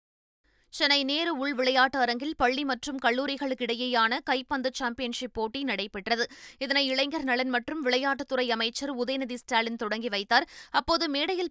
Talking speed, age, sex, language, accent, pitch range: 130 wpm, 20-39, female, Tamil, native, 240-280 Hz